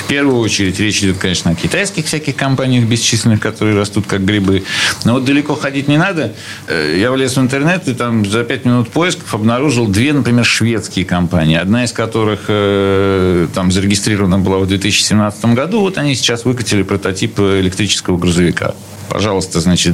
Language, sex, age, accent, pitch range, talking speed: Russian, male, 40-59, native, 100-140 Hz, 165 wpm